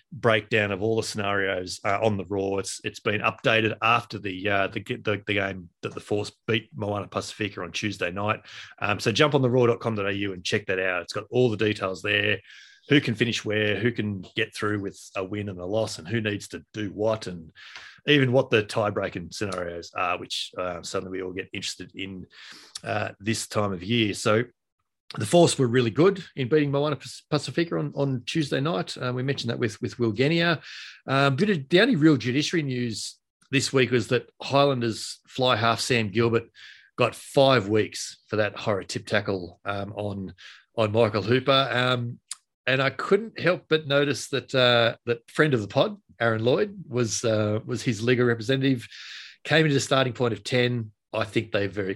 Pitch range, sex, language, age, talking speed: 105-130 Hz, male, English, 30-49, 195 wpm